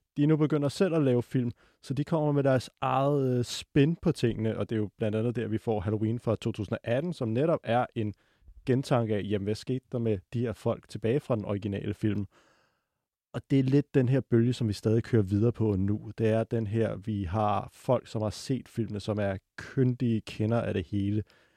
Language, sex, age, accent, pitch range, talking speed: Danish, male, 30-49, native, 105-125 Hz, 225 wpm